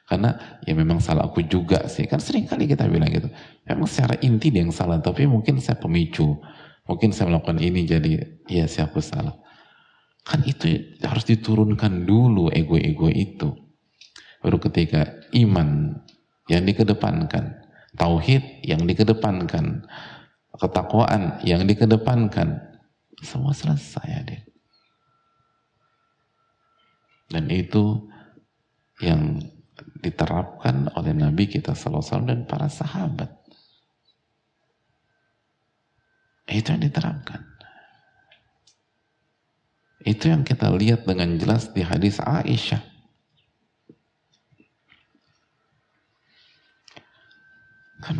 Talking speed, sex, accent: 95 wpm, male, native